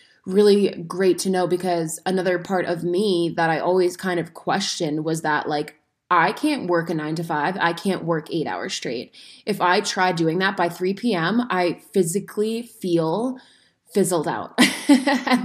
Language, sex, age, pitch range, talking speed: English, female, 20-39, 165-195 Hz, 175 wpm